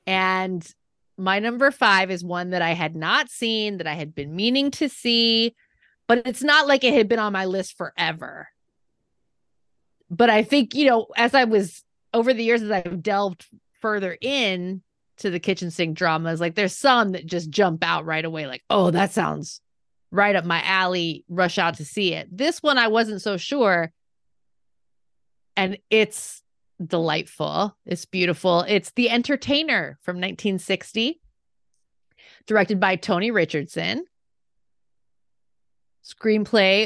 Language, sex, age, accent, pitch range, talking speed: English, female, 30-49, American, 175-230 Hz, 150 wpm